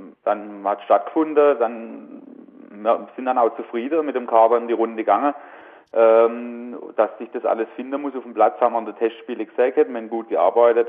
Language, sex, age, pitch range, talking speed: German, male, 30-49, 105-120 Hz, 205 wpm